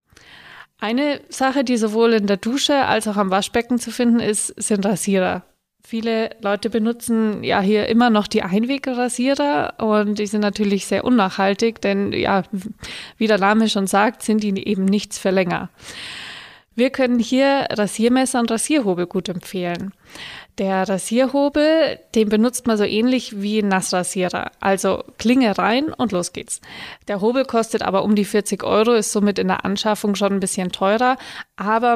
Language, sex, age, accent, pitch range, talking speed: German, female, 20-39, German, 195-230 Hz, 160 wpm